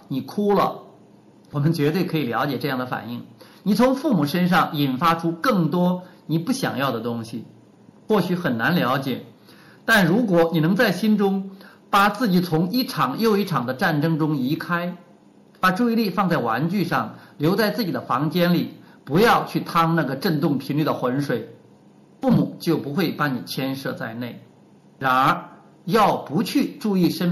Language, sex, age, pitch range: Chinese, male, 50-69, 145-195 Hz